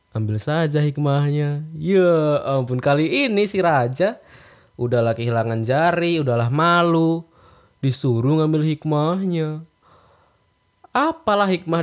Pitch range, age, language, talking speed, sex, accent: 110-145 Hz, 20-39, Indonesian, 95 wpm, male, native